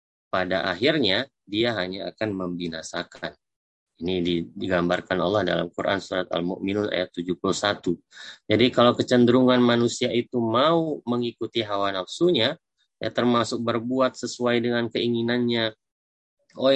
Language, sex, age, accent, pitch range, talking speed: Indonesian, male, 30-49, native, 90-120 Hz, 110 wpm